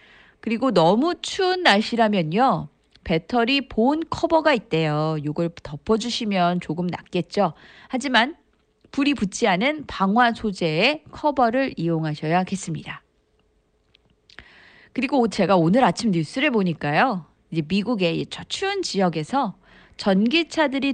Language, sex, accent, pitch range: Korean, female, native, 180-285 Hz